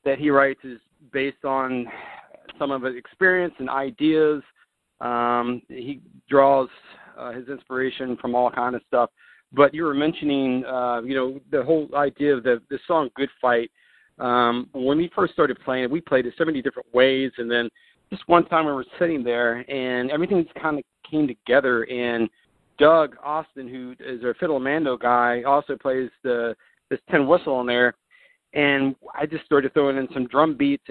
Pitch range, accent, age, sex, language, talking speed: 125-150 Hz, American, 40-59, male, English, 185 wpm